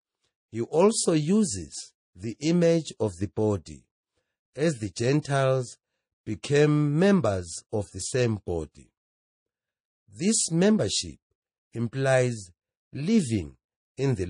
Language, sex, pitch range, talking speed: English, male, 105-150 Hz, 95 wpm